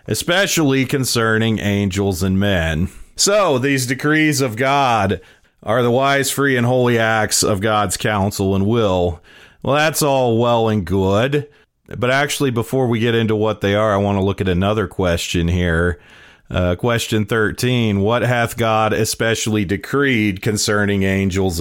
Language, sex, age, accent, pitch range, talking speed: English, male, 40-59, American, 100-130 Hz, 155 wpm